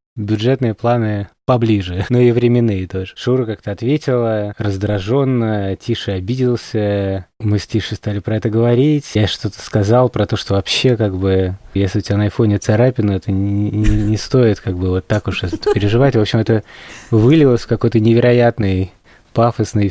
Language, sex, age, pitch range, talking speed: Russian, male, 20-39, 105-120 Hz, 165 wpm